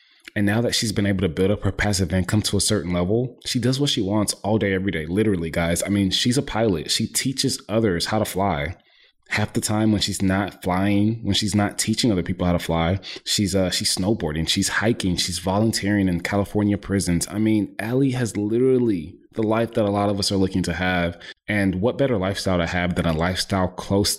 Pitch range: 90-105 Hz